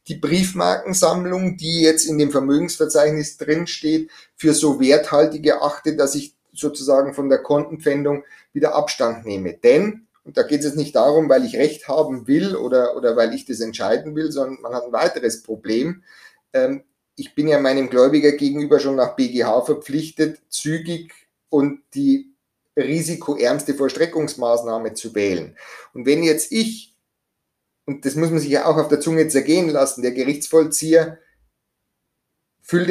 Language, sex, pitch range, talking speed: German, male, 135-160 Hz, 155 wpm